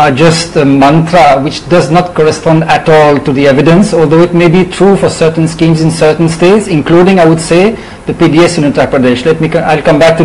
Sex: male